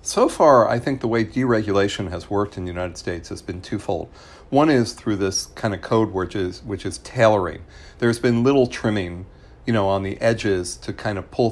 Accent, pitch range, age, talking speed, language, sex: American, 90-115 Hz, 50-69, 215 wpm, English, male